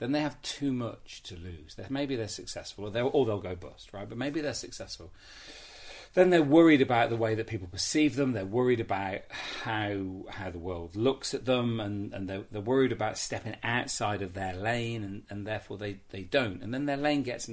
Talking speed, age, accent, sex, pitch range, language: 215 wpm, 40-59, British, male, 95-130 Hz, English